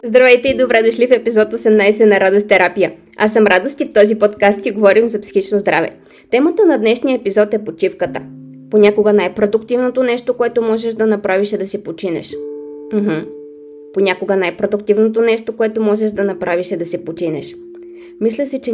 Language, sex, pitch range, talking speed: Bulgarian, female, 180-220 Hz, 175 wpm